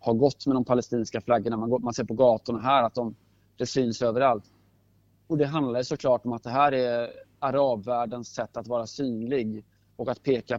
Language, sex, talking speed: Swedish, male, 185 wpm